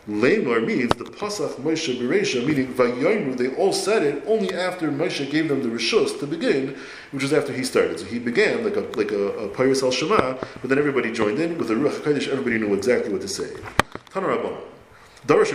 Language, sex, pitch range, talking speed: English, male, 115-160 Hz, 205 wpm